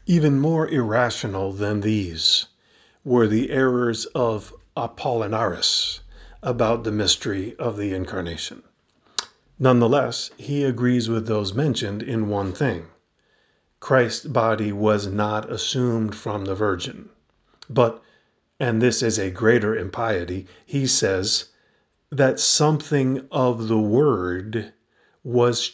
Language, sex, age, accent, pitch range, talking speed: English, male, 50-69, American, 105-130 Hz, 110 wpm